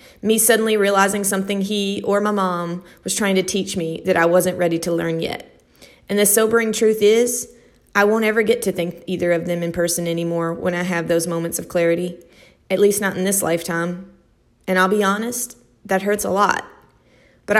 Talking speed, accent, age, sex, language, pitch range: 200 wpm, American, 30-49, female, English, 185-235 Hz